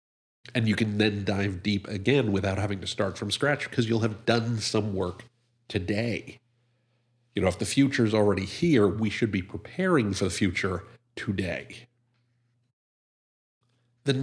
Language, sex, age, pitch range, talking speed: English, male, 50-69, 105-125 Hz, 150 wpm